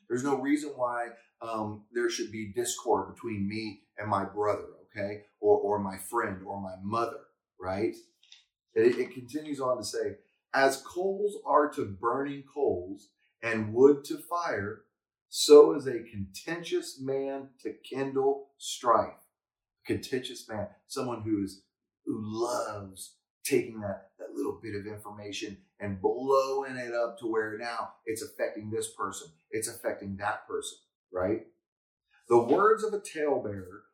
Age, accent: 30-49, American